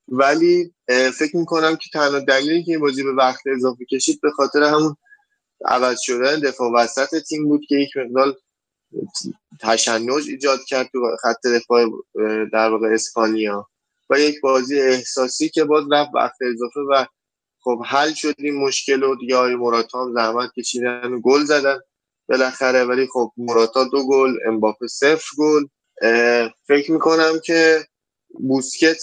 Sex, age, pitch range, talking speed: male, 20-39, 125-150 Hz, 140 wpm